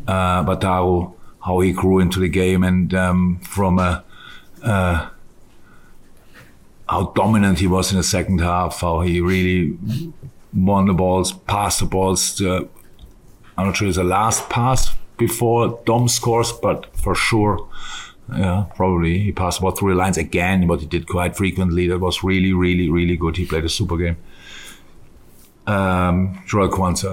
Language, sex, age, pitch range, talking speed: English, male, 50-69, 90-95 Hz, 155 wpm